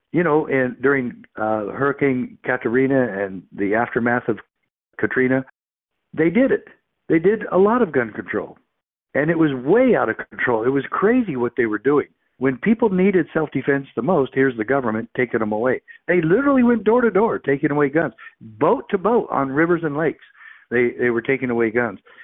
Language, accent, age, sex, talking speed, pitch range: English, American, 60-79, male, 190 wpm, 120-160 Hz